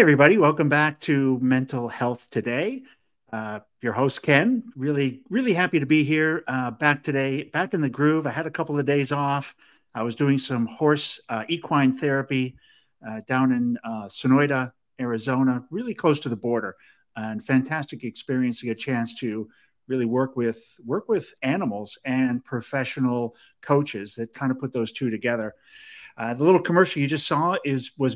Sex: male